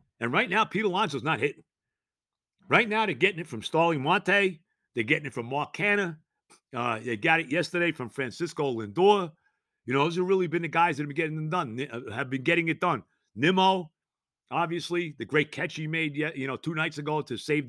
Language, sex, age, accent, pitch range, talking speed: English, male, 50-69, American, 140-190 Hz, 210 wpm